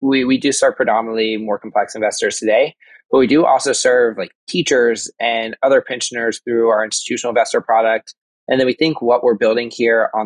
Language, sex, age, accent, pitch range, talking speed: English, male, 20-39, American, 110-135 Hz, 195 wpm